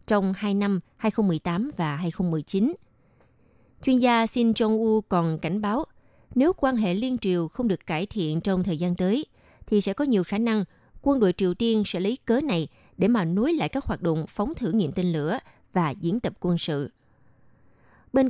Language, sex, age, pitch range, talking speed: Vietnamese, female, 20-39, 175-230 Hz, 190 wpm